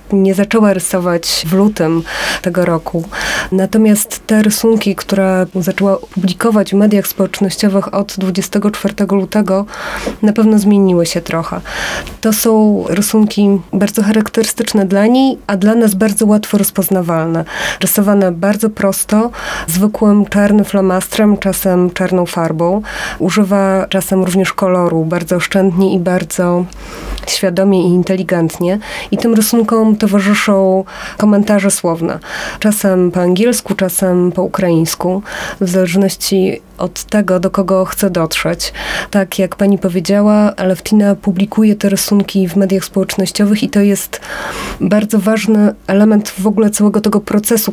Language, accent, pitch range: Polish, native, 185-210 Hz